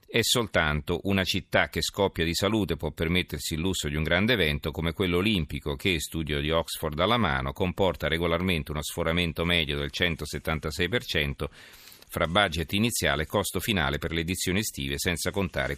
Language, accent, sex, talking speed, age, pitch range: Italian, native, male, 165 wpm, 40-59, 80-100 Hz